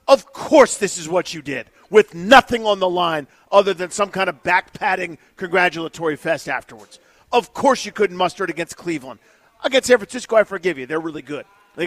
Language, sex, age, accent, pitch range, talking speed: English, male, 40-59, American, 185-260 Hz, 195 wpm